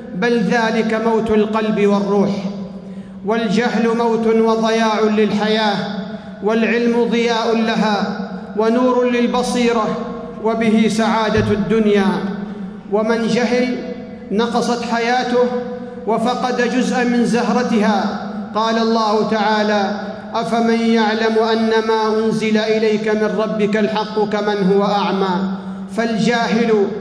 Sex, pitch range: male, 210-240 Hz